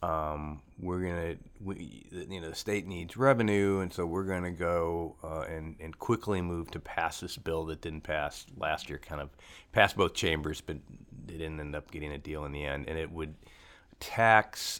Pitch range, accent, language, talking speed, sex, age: 80-95 Hz, American, English, 200 wpm, male, 30-49